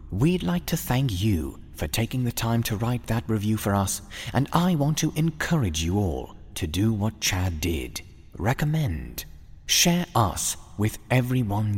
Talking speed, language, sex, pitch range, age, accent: 165 wpm, English, male, 85-130 Hz, 30-49, British